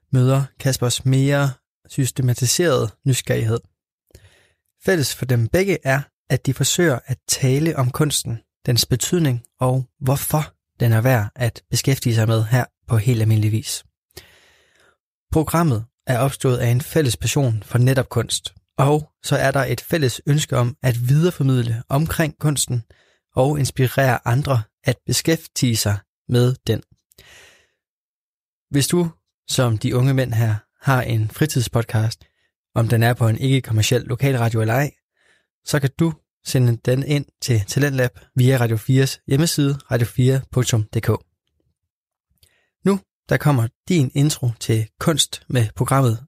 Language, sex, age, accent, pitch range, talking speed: Danish, male, 20-39, native, 115-140 Hz, 135 wpm